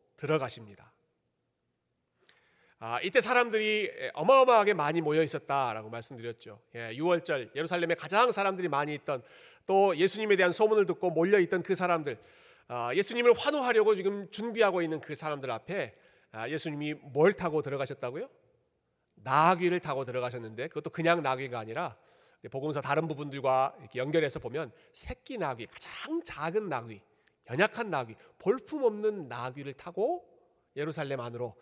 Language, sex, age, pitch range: Korean, male, 40-59, 130-195 Hz